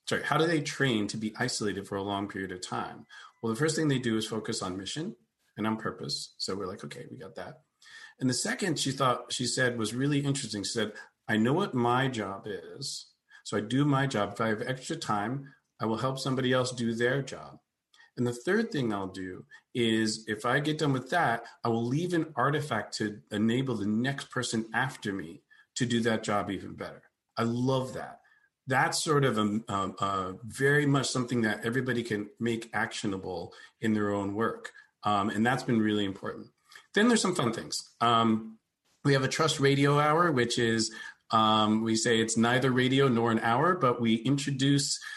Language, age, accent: English, 40-59, American